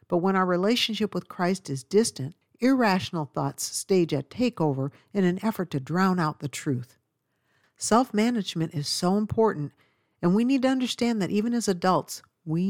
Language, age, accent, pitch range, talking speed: English, 50-69, American, 150-205 Hz, 165 wpm